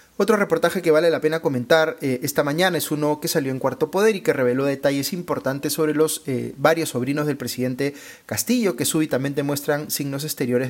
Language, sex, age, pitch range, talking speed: Spanish, male, 30-49, 125-155 Hz, 195 wpm